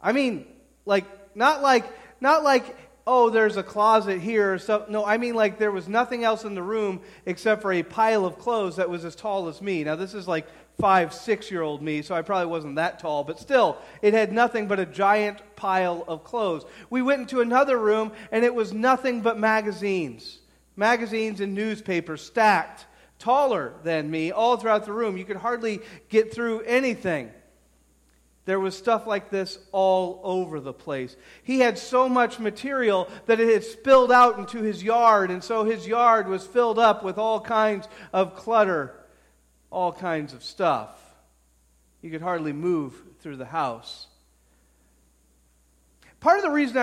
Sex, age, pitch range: male, 40-59, 170-230 Hz